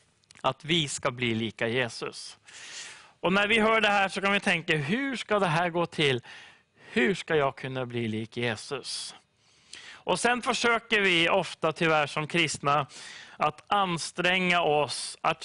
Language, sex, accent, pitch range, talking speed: English, male, Swedish, 135-190 Hz, 160 wpm